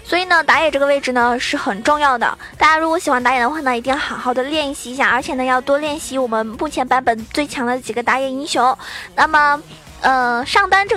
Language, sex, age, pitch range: Chinese, female, 20-39, 250-315 Hz